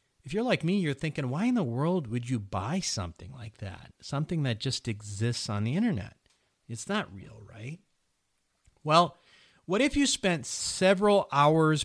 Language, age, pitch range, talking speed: English, 40-59, 100-135 Hz, 170 wpm